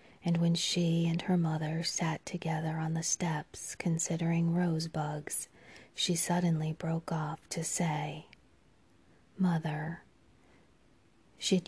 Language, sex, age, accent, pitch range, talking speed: English, female, 30-49, American, 155-170 Hz, 110 wpm